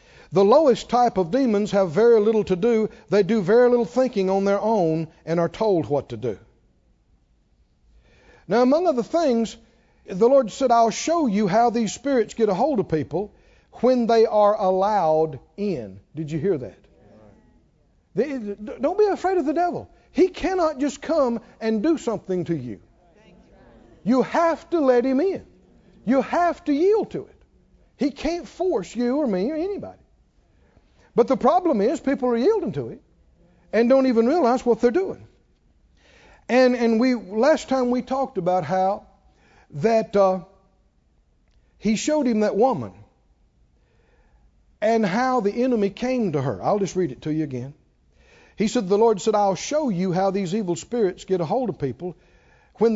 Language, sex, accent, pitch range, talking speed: English, male, American, 175-250 Hz, 170 wpm